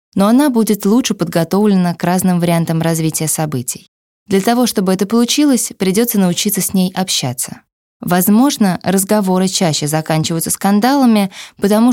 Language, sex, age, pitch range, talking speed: Russian, female, 20-39, 165-210 Hz, 130 wpm